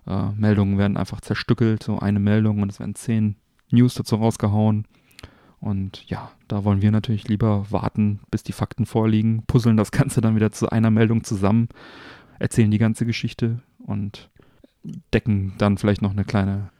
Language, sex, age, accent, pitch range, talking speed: German, male, 30-49, German, 100-110 Hz, 170 wpm